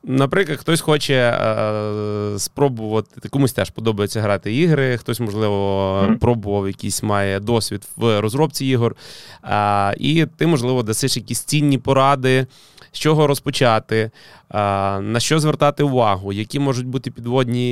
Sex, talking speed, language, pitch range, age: male, 130 wpm, Ukrainian, 105-130 Hz, 20-39